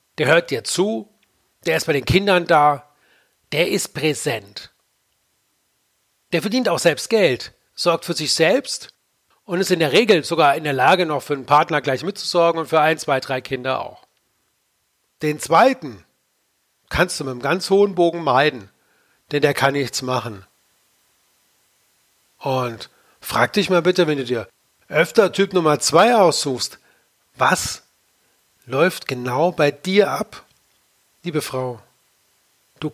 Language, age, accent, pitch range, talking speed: German, 40-59, German, 140-180 Hz, 150 wpm